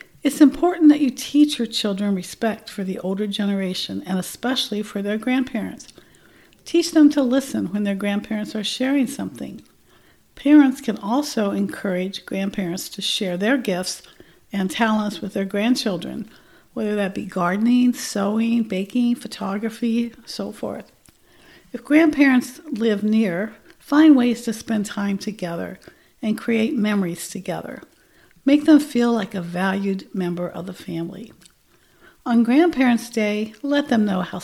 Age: 60-79